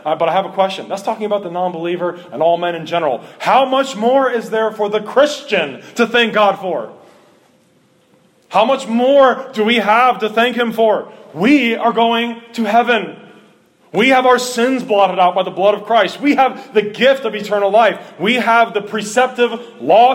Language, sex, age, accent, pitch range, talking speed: English, male, 30-49, American, 185-230 Hz, 195 wpm